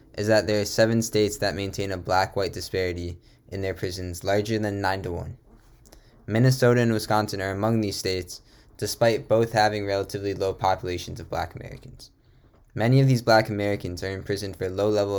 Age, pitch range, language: 10-29, 95-115 Hz, English